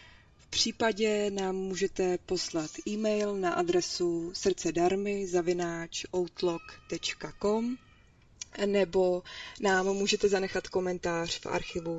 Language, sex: Czech, female